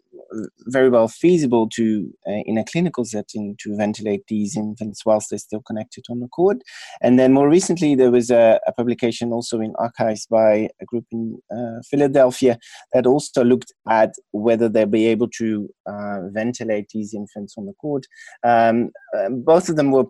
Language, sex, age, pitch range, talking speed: English, male, 30-49, 110-130 Hz, 175 wpm